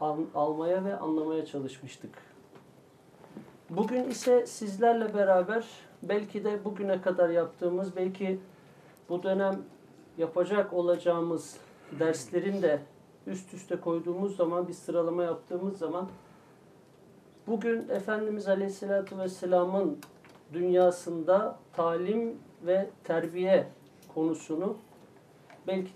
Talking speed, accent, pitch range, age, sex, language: 90 wpm, native, 175-200 Hz, 50-69, male, Turkish